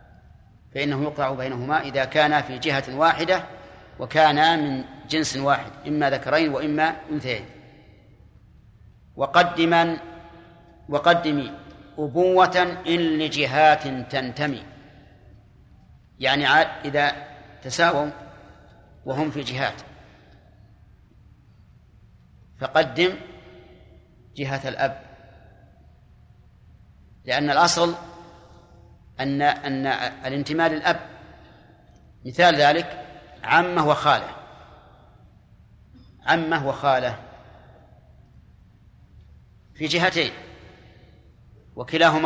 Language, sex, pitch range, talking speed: Arabic, male, 120-155 Hz, 65 wpm